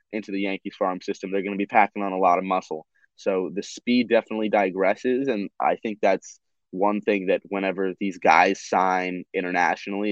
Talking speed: 190 wpm